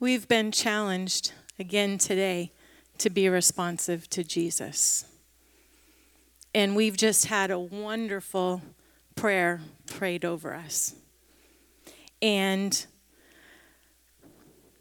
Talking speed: 85 wpm